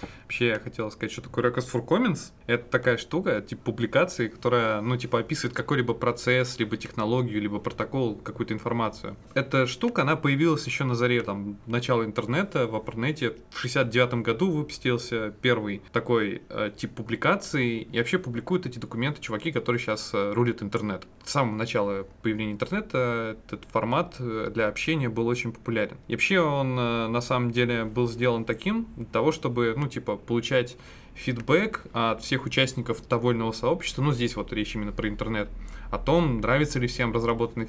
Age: 20-39